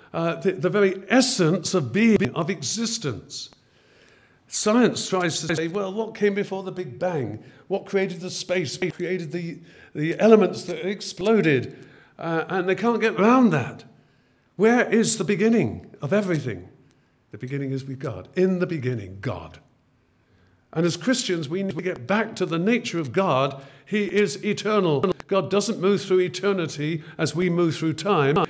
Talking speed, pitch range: 165 wpm, 140-195 Hz